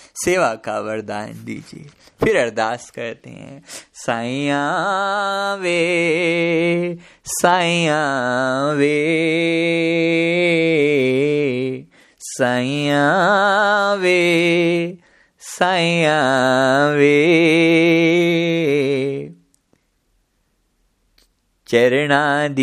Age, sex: 30-49, male